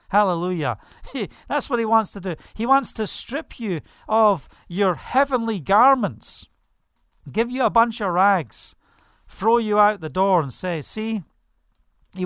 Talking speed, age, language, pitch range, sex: 150 wpm, 50-69, English, 140-195 Hz, male